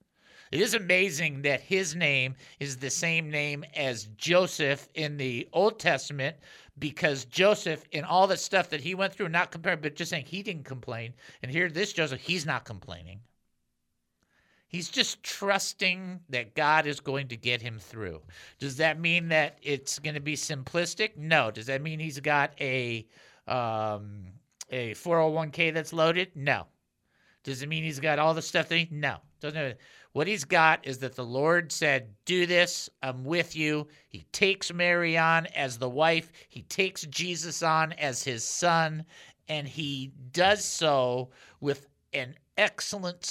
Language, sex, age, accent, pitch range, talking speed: English, male, 50-69, American, 130-170 Hz, 165 wpm